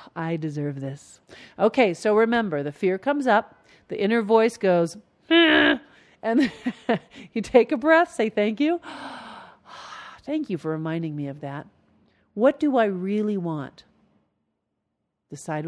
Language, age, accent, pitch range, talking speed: English, 50-69, American, 165-230 Hz, 140 wpm